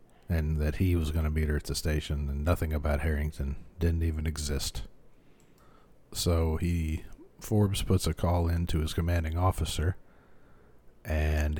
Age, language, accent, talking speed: 40-59, English, American, 155 wpm